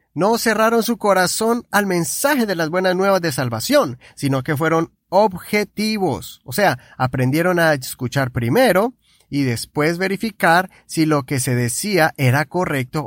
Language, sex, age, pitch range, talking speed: Spanish, male, 30-49, 140-205 Hz, 145 wpm